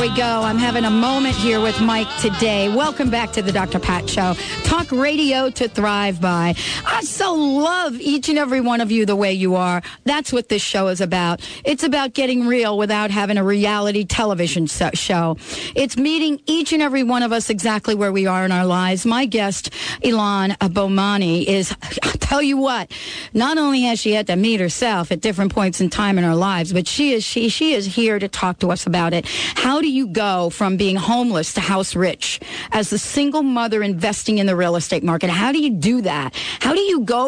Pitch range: 190-245 Hz